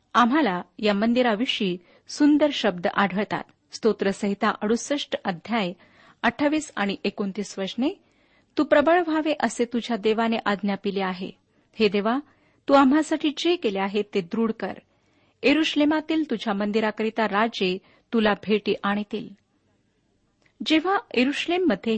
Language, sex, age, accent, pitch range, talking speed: Marathi, female, 40-59, native, 200-265 Hz, 110 wpm